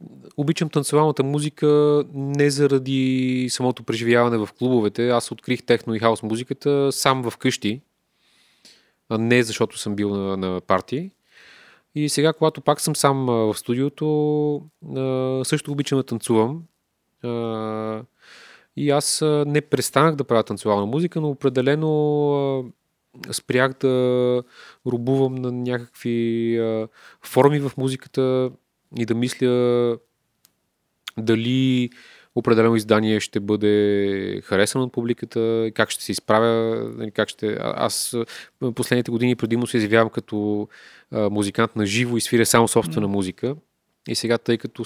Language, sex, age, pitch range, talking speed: Bulgarian, male, 30-49, 110-135 Hz, 120 wpm